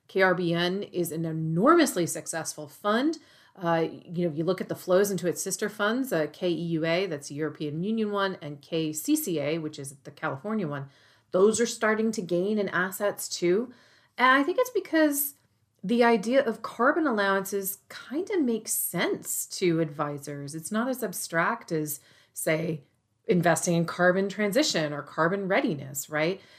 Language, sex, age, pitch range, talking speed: English, female, 30-49, 160-220 Hz, 160 wpm